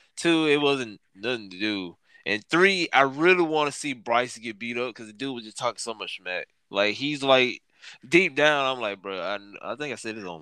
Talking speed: 235 wpm